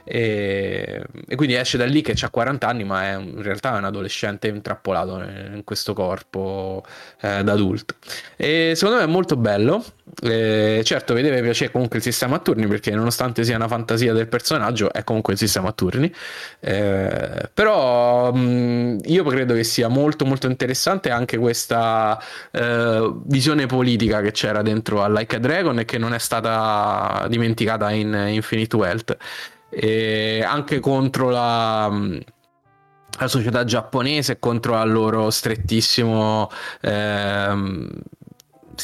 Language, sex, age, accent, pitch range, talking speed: Italian, male, 10-29, native, 110-120 Hz, 145 wpm